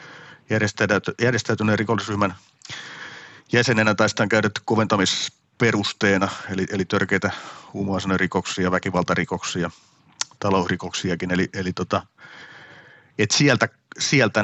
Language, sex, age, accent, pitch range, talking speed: Finnish, male, 40-59, native, 95-110 Hz, 75 wpm